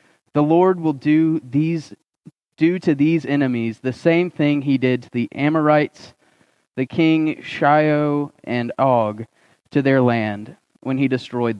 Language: English